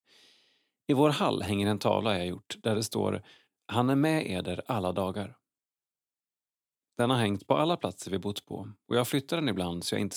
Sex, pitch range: male, 100-130 Hz